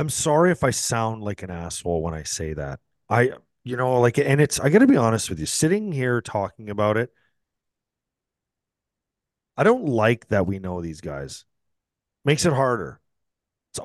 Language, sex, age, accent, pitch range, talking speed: English, male, 30-49, American, 105-145 Hz, 180 wpm